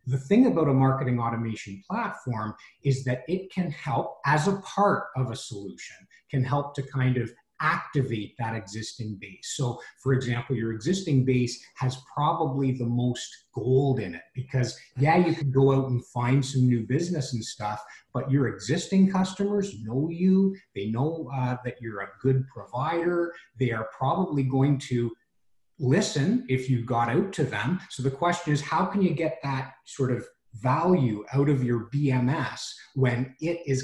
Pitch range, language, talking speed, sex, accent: 120-145 Hz, English, 175 wpm, male, American